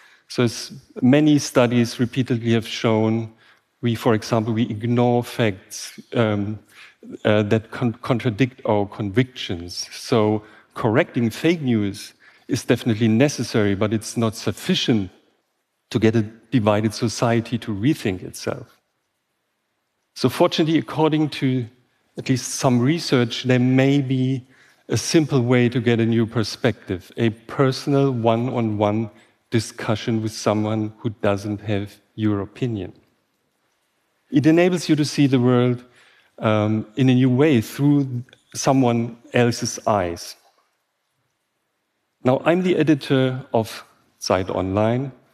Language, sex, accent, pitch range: Japanese, male, German, 110-130 Hz